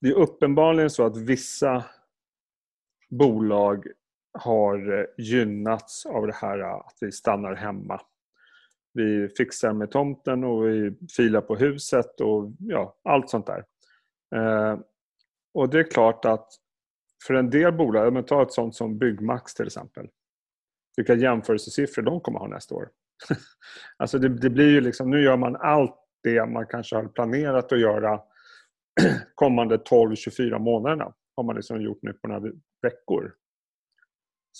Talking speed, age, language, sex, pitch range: 145 wpm, 30-49, Swedish, male, 110-140 Hz